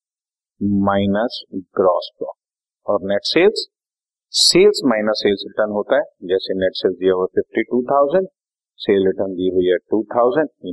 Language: Hindi